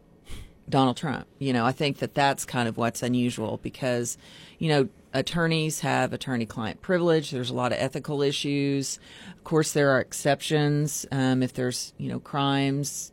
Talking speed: 165 wpm